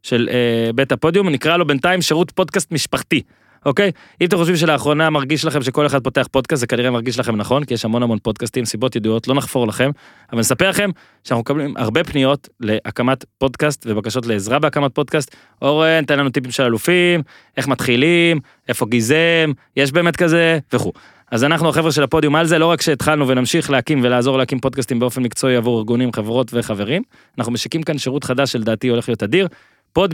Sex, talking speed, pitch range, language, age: male, 135 wpm, 125-160 Hz, Hebrew, 20-39